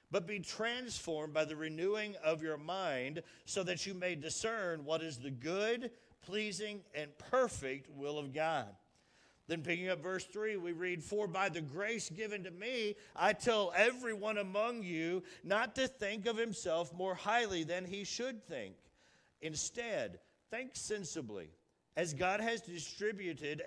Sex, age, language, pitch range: male, 50-69, English, 155-215 Hz